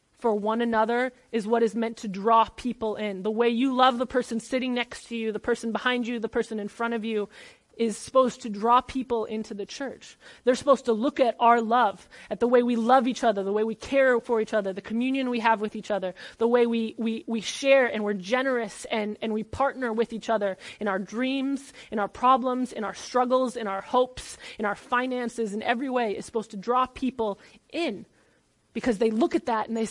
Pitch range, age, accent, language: 220-260 Hz, 30-49, American, English